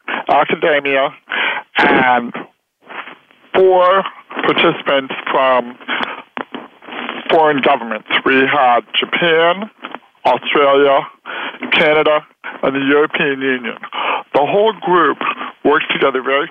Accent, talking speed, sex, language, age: American, 80 wpm, male, English, 50-69